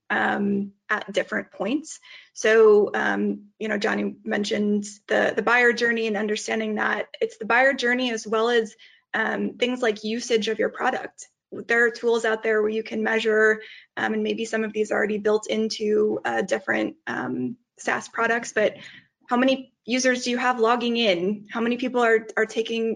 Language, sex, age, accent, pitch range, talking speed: English, female, 20-39, American, 210-235 Hz, 185 wpm